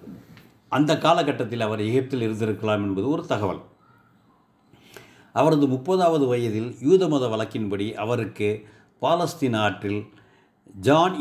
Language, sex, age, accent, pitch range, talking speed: Tamil, male, 60-79, native, 100-130 Hz, 95 wpm